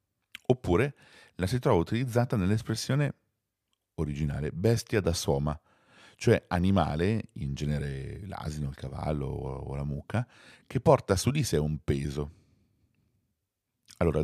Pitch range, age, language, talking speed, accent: 75-110 Hz, 40-59, Italian, 120 wpm, native